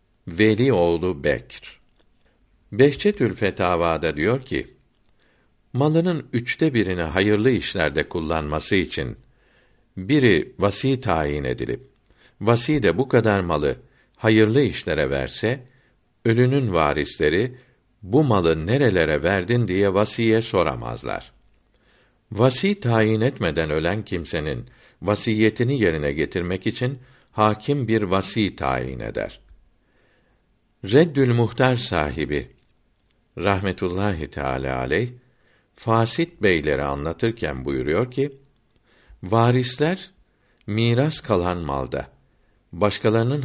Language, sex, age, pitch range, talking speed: Turkish, male, 60-79, 90-125 Hz, 90 wpm